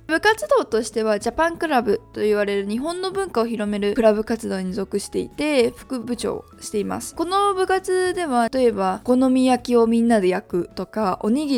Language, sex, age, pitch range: Japanese, female, 20-39, 205-265 Hz